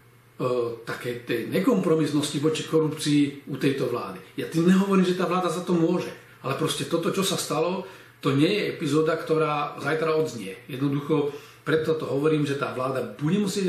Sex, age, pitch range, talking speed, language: male, 40-59, 135-170 Hz, 165 wpm, Slovak